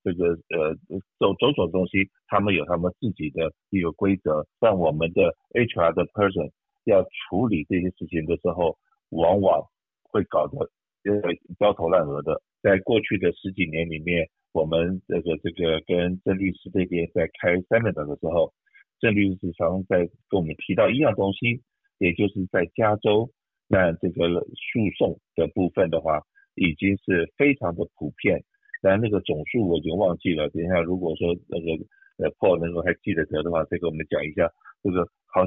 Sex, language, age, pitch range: male, Chinese, 50-69, 85-100 Hz